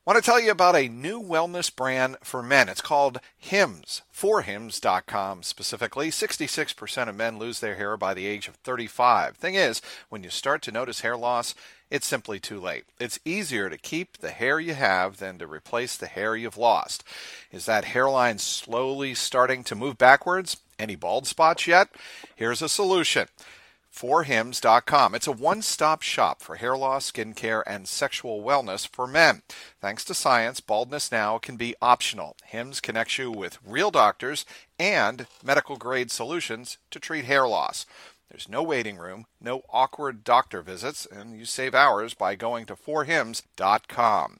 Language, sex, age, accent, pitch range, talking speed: English, male, 50-69, American, 110-140 Hz, 170 wpm